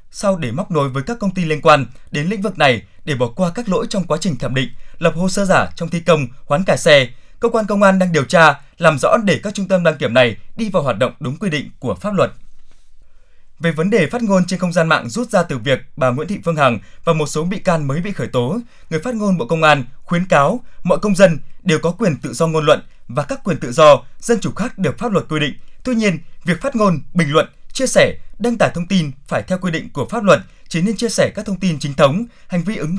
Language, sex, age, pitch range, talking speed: Vietnamese, male, 20-39, 145-200 Hz, 275 wpm